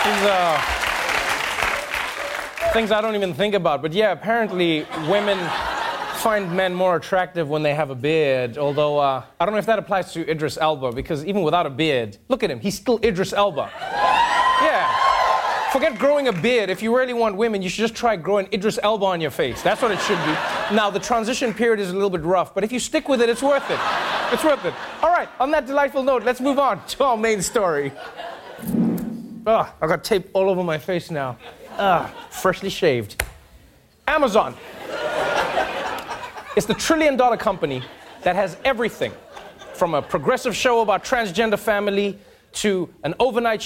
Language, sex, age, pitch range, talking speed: English, male, 30-49, 185-240 Hz, 185 wpm